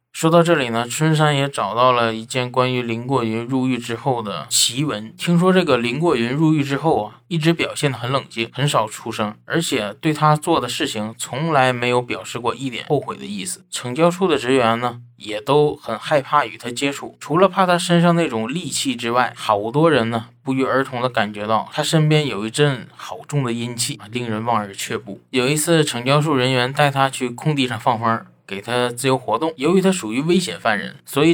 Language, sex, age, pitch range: Chinese, male, 20-39, 115-155 Hz